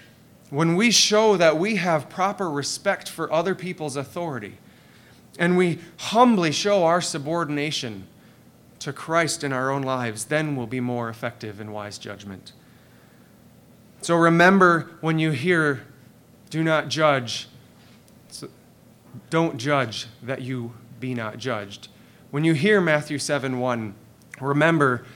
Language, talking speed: English, 130 wpm